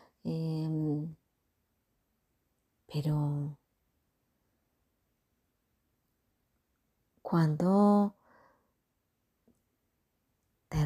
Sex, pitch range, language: female, 170-205 Hz, Spanish